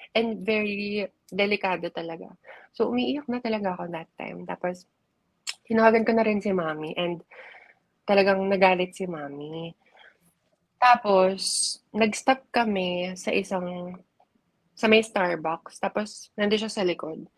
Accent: Filipino